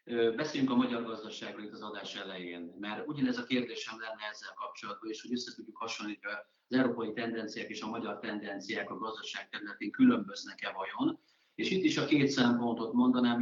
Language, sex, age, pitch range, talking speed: Hungarian, male, 30-49, 100-125 Hz, 180 wpm